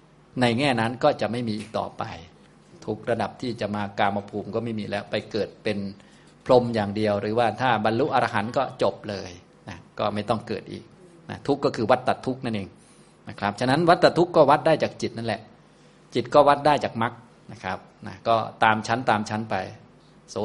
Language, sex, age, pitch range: Thai, male, 20-39, 105-125 Hz